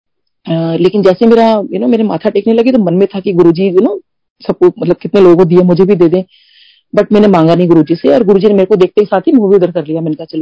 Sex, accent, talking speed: female, native, 115 wpm